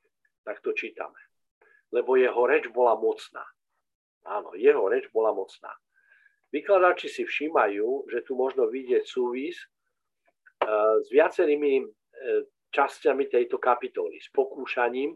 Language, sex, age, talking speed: Slovak, male, 50-69, 110 wpm